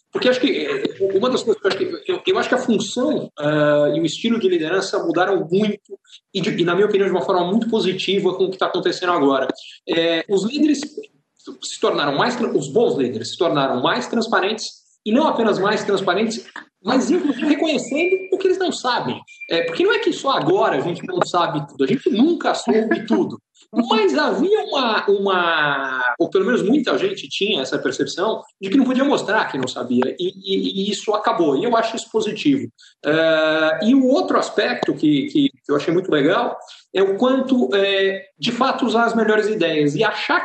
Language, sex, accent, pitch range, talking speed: Portuguese, male, Brazilian, 180-295 Hz, 195 wpm